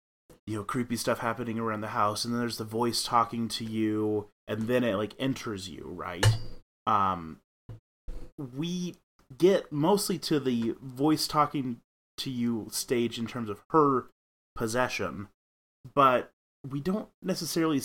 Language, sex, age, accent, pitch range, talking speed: English, male, 30-49, American, 110-140 Hz, 145 wpm